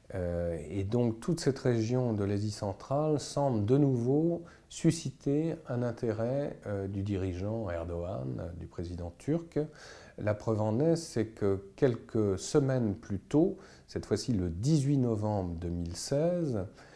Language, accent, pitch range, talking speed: French, French, 95-130 Hz, 125 wpm